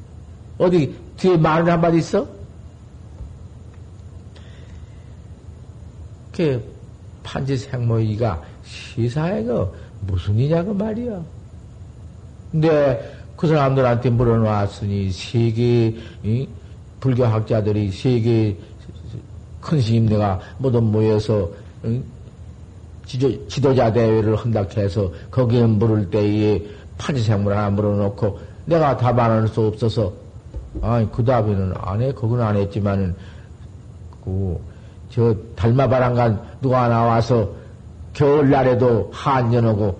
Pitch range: 100-120 Hz